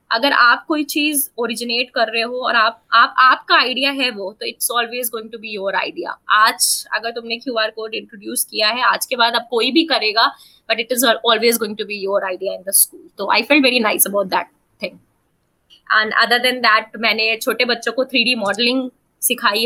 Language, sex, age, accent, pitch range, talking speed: Hindi, female, 20-39, native, 215-250 Hz, 215 wpm